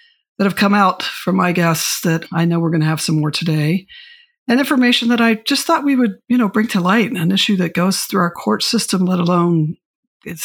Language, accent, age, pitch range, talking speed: English, American, 50-69, 160-205 Hz, 235 wpm